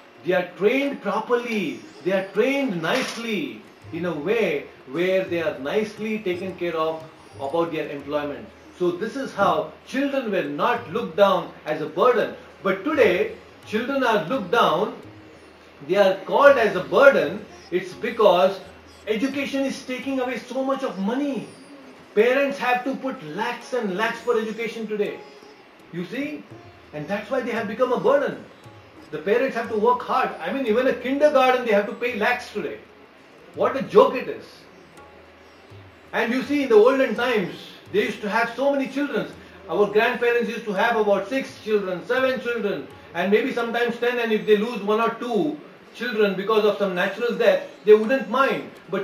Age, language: 40-59, English